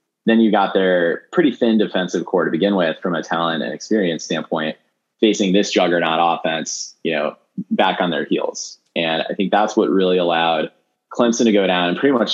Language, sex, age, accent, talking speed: English, male, 20-39, American, 200 wpm